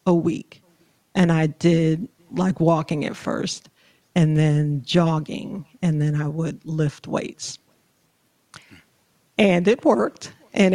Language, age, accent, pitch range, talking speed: English, 40-59, American, 155-180 Hz, 125 wpm